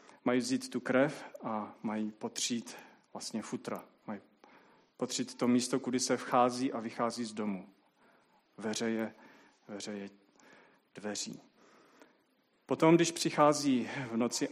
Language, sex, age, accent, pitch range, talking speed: Czech, male, 40-59, native, 120-135 Hz, 120 wpm